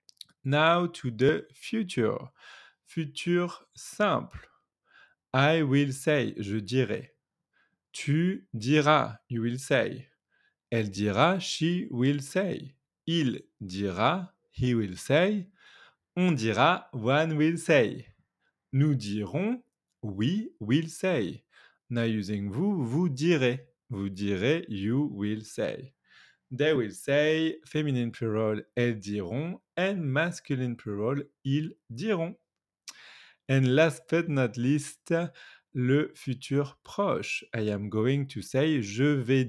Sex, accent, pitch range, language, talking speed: male, French, 115-160 Hz, French, 110 wpm